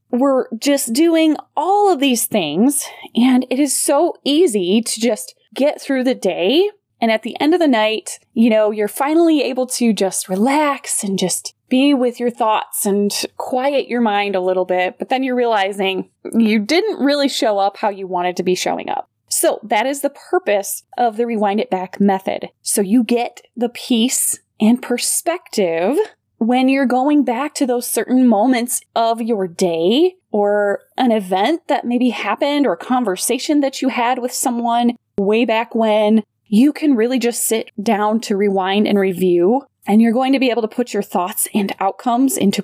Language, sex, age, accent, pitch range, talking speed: English, female, 20-39, American, 205-270 Hz, 185 wpm